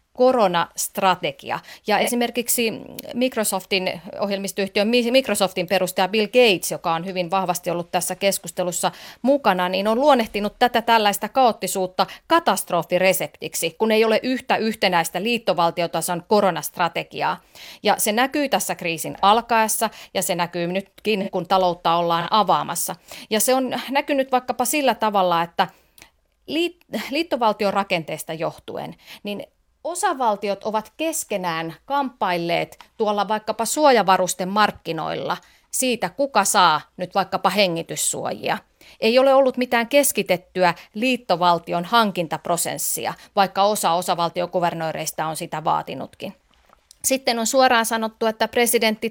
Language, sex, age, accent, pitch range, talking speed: Finnish, female, 30-49, native, 180-240 Hz, 110 wpm